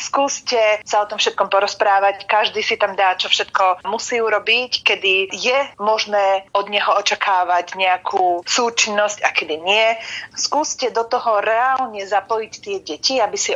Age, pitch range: 30-49, 185-220 Hz